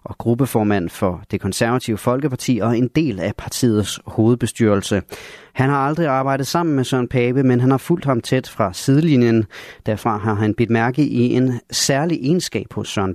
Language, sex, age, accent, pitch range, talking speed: Danish, male, 30-49, native, 105-130 Hz, 180 wpm